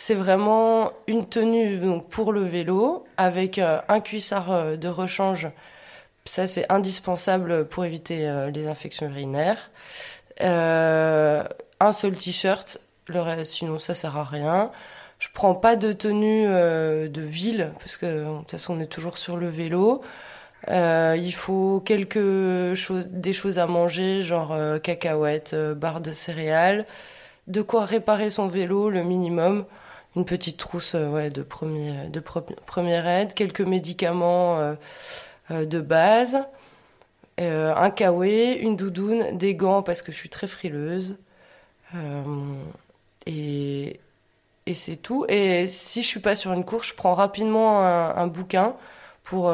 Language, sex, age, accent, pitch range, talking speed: French, female, 20-39, French, 165-195 Hz, 155 wpm